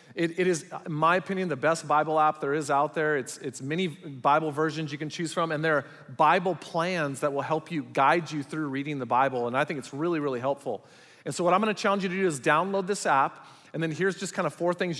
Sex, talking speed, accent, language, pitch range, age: male, 260 wpm, American, English, 145-175 Hz, 40-59